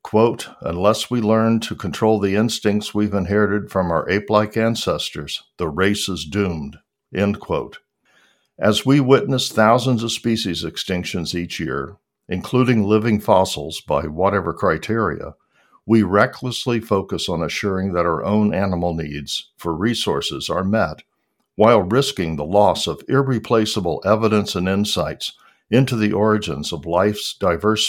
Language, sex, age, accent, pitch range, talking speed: English, male, 60-79, American, 90-110 Hz, 140 wpm